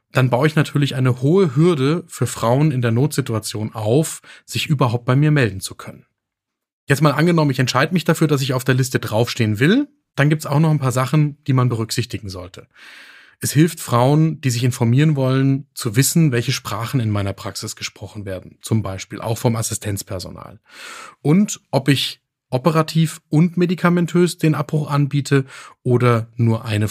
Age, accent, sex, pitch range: 30-49, German, male, 115-155 Hz